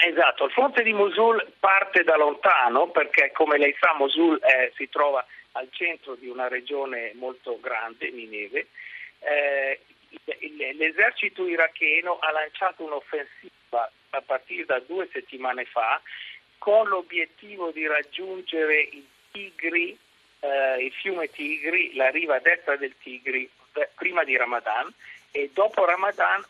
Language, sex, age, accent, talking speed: Italian, male, 50-69, native, 125 wpm